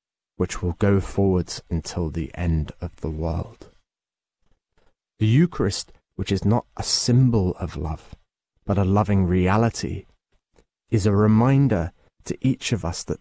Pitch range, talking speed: 85-110 Hz, 140 wpm